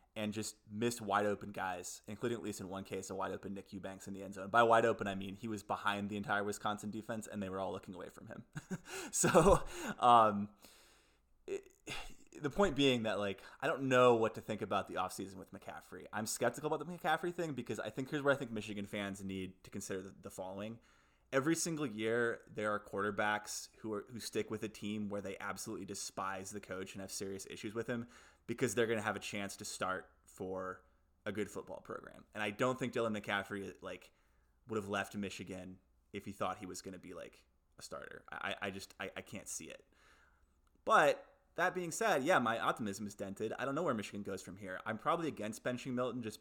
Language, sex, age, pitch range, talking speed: English, male, 20-39, 95-115 Hz, 215 wpm